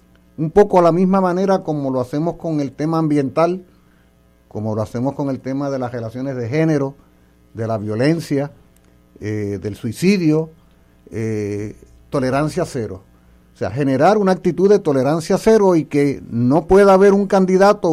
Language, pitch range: Spanish, 100-170 Hz